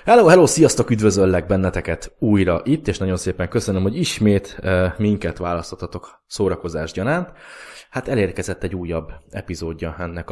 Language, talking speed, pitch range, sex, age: Hungarian, 135 wpm, 85-105 Hz, male, 20-39